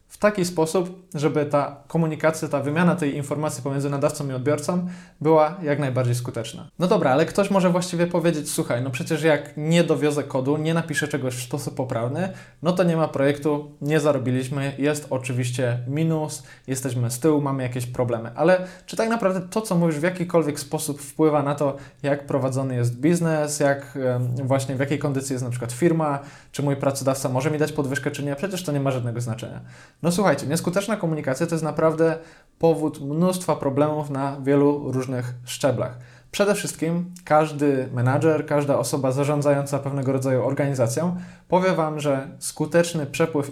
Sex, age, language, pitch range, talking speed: male, 20-39, Polish, 135-160 Hz, 170 wpm